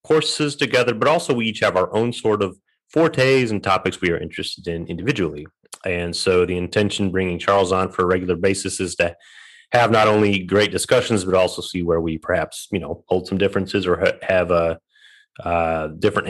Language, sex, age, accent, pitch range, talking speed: English, male, 30-49, American, 85-110 Hz, 205 wpm